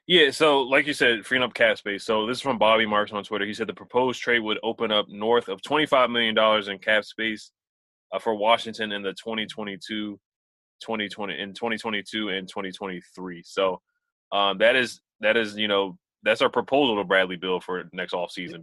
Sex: male